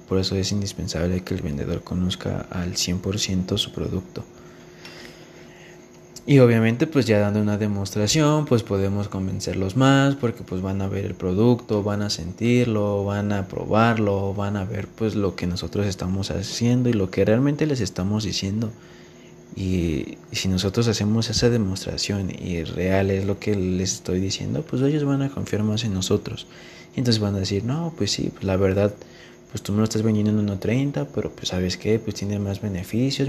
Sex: male